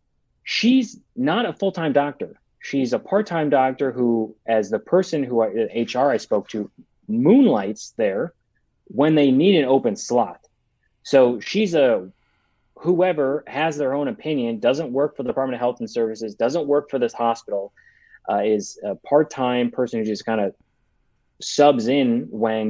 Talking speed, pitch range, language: 160 wpm, 115-155 Hz, English